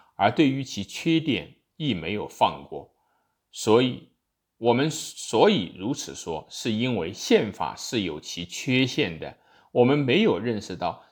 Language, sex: Chinese, male